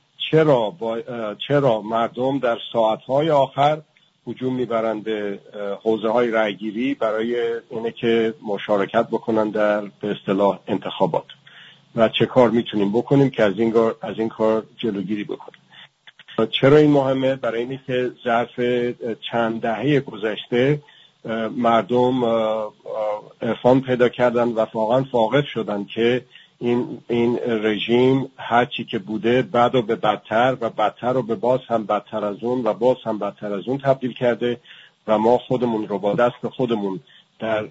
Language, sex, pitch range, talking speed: English, male, 110-130 Hz, 135 wpm